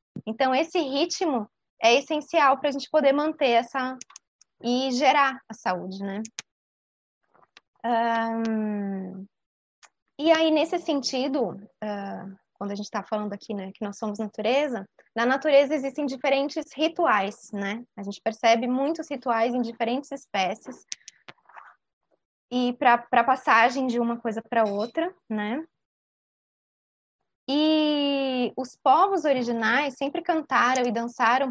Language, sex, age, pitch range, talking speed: Portuguese, female, 20-39, 220-280 Hz, 125 wpm